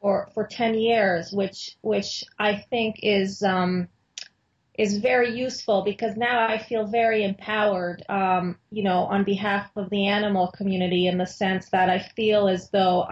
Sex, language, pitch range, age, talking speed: female, English, 185-215 Hz, 30-49, 165 wpm